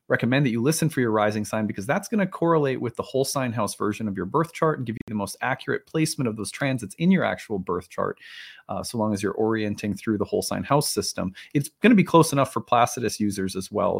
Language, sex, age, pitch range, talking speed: English, male, 30-49, 105-155 Hz, 260 wpm